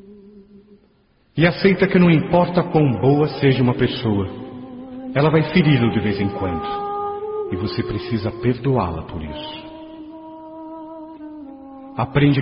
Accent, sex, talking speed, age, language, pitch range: Brazilian, male, 115 wpm, 50-69, Portuguese, 125-205 Hz